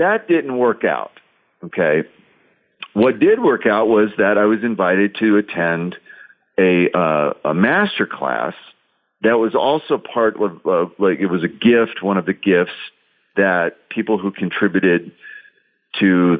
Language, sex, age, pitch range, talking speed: English, male, 50-69, 90-120 Hz, 150 wpm